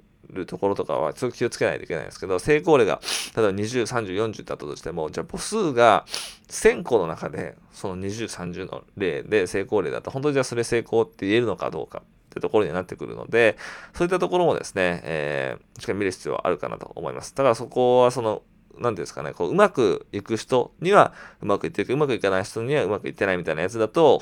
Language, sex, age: Japanese, male, 20-39